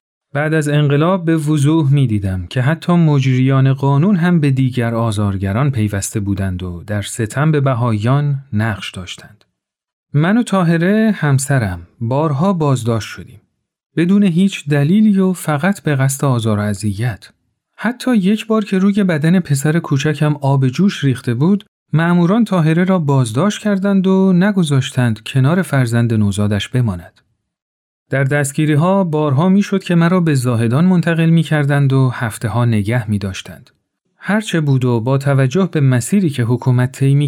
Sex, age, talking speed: male, 40-59, 145 wpm